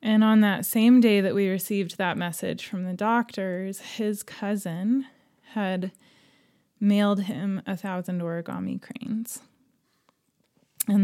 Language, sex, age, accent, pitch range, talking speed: English, female, 20-39, American, 185-210 Hz, 125 wpm